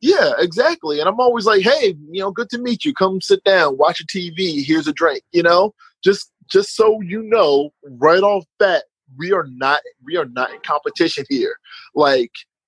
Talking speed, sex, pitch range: 200 wpm, male, 155-210 Hz